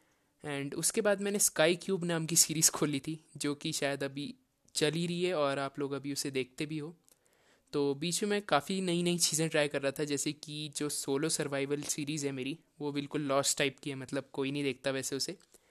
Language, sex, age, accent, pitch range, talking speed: Hindi, male, 20-39, native, 140-165 Hz, 220 wpm